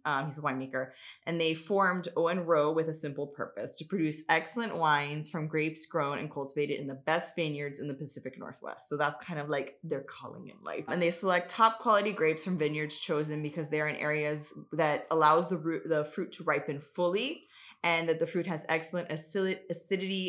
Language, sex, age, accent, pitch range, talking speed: English, female, 20-39, American, 150-175 Hz, 205 wpm